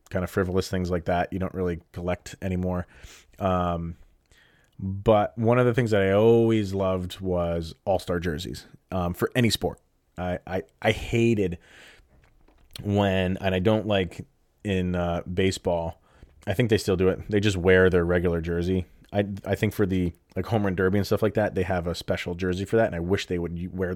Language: English